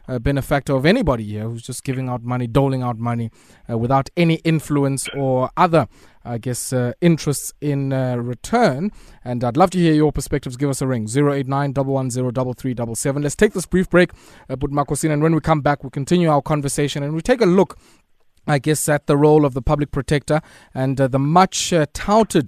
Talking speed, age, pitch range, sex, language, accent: 220 wpm, 20-39, 130-165 Hz, male, English, South African